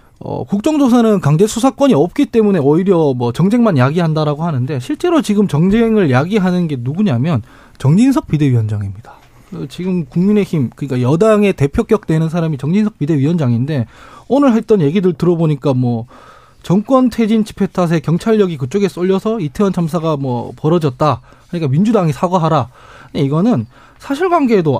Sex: male